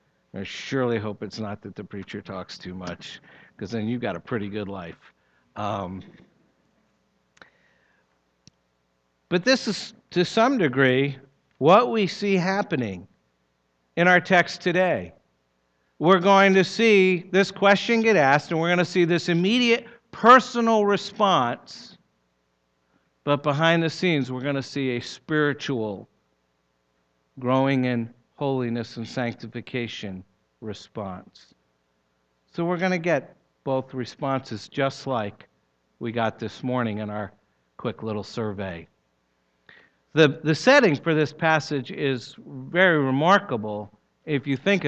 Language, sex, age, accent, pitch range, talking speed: English, male, 50-69, American, 105-175 Hz, 130 wpm